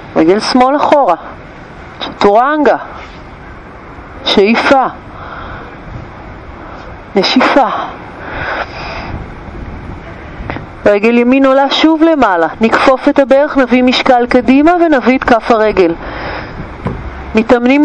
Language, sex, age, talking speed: Hebrew, female, 40-59, 75 wpm